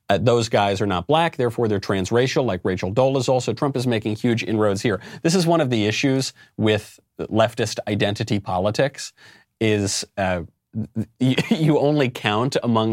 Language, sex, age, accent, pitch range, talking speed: English, male, 30-49, American, 100-130 Hz, 170 wpm